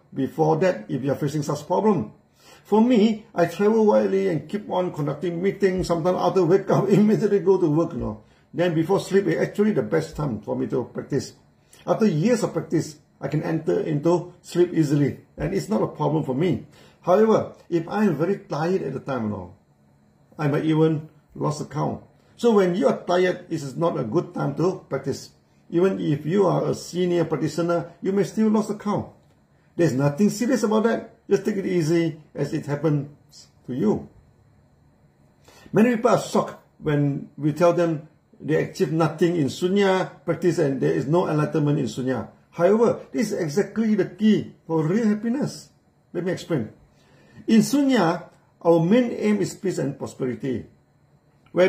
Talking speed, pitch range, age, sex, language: 180 wpm, 150-195 Hz, 50-69, male, English